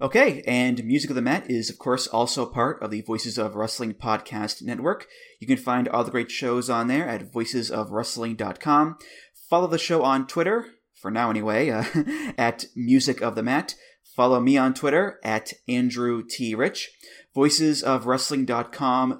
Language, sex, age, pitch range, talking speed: English, male, 30-49, 115-135 Hz, 165 wpm